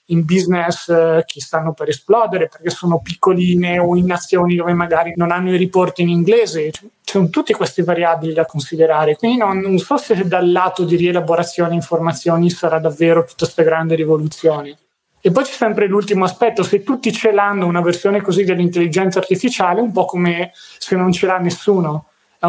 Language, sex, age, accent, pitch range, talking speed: Italian, male, 20-39, native, 175-210 Hz, 180 wpm